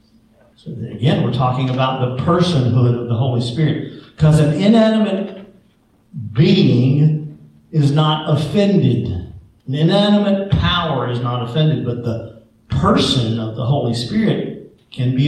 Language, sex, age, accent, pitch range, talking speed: English, male, 50-69, American, 115-155 Hz, 125 wpm